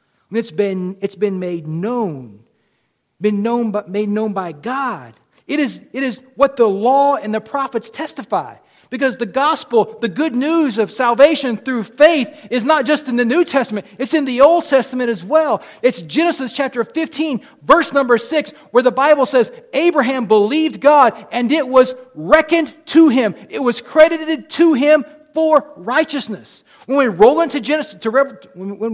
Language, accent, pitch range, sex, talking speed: English, American, 220-295 Hz, male, 170 wpm